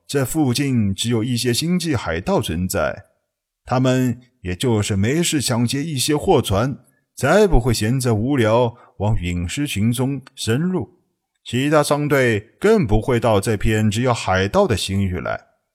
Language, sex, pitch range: Chinese, male, 100-135 Hz